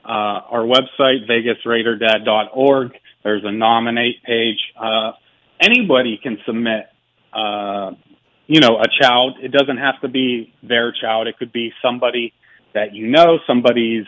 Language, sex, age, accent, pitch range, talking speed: English, male, 40-59, American, 110-140 Hz, 135 wpm